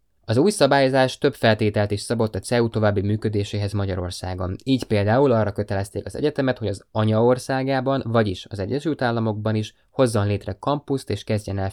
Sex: male